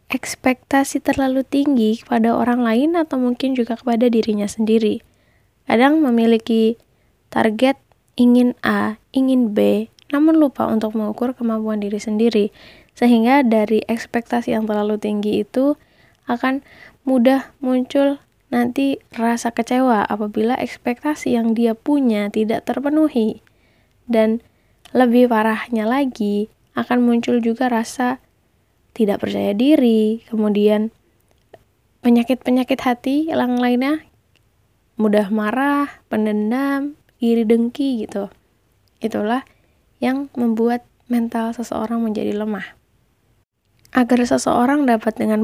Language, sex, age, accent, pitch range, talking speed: Indonesian, female, 10-29, native, 220-260 Hz, 105 wpm